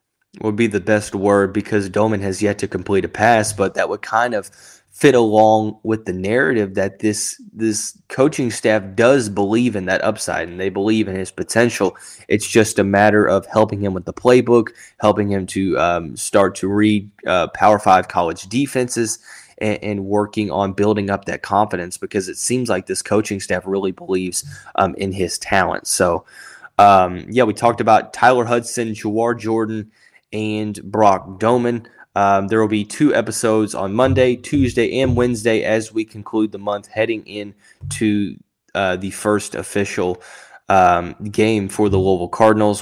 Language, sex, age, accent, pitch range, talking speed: English, male, 20-39, American, 95-115 Hz, 175 wpm